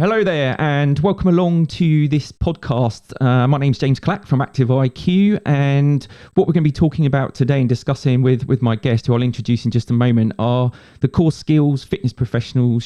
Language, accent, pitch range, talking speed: English, British, 110-140 Hz, 210 wpm